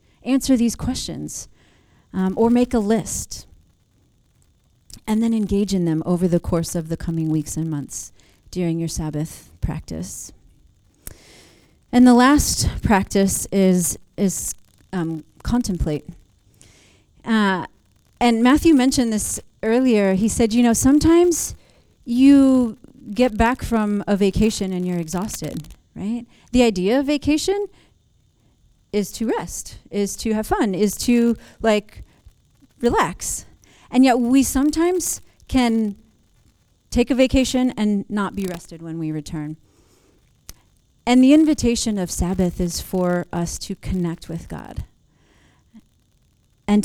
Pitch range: 165-240 Hz